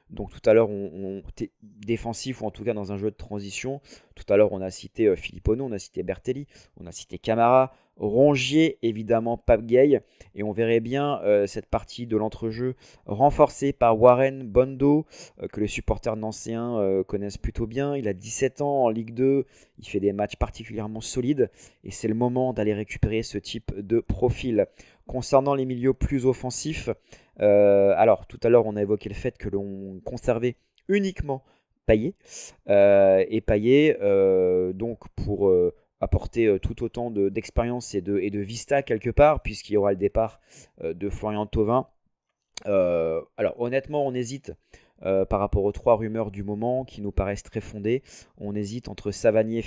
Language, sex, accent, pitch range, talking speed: French, male, French, 100-130 Hz, 185 wpm